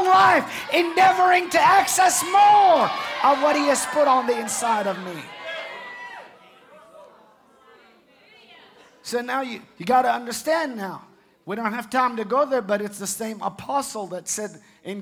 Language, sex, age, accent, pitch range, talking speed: English, male, 50-69, American, 190-235 Hz, 150 wpm